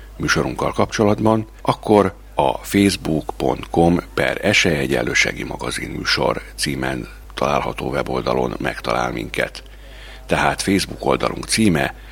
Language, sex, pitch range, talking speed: Hungarian, male, 70-100 Hz, 90 wpm